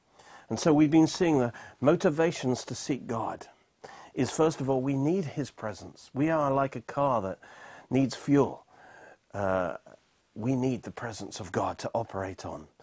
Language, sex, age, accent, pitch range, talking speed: English, male, 40-59, British, 100-145 Hz, 170 wpm